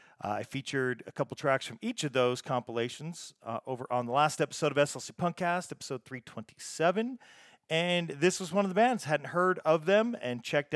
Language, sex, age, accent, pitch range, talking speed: English, male, 40-59, American, 125-155 Hz, 190 wpm